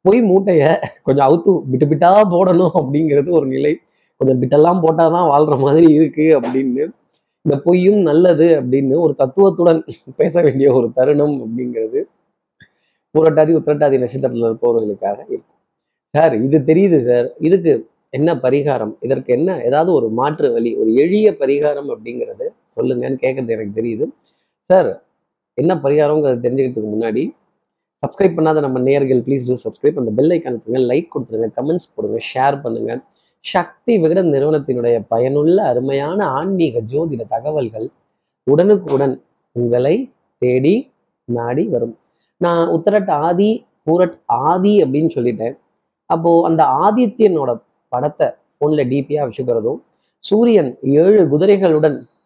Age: 30-49